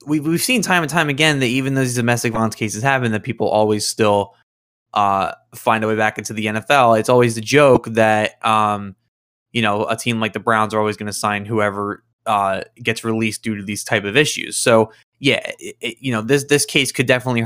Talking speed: 220 wpm